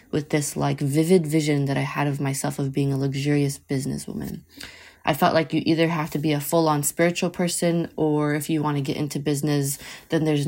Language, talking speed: English, 210 wpm